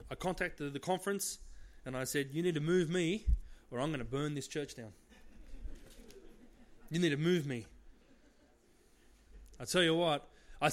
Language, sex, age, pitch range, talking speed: English, male, 30-49, 135-185 Hz, 170 wpm